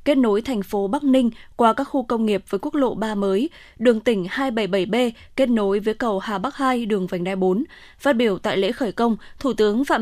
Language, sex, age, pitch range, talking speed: Vietnamese, female, 10-29, 210-260 Hz, 235 wpm